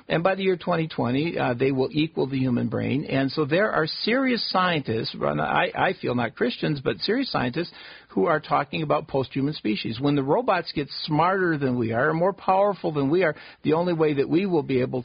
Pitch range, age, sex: 125-155 Hz, 50-69, male